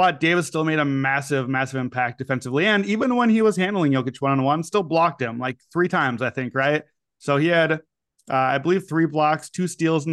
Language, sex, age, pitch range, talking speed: English, male, 30-49, 135-160 Hz, 220 wpm